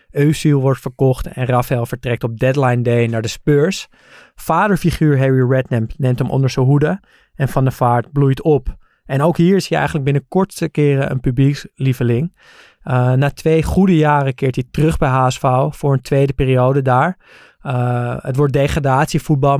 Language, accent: Dutch, Dutch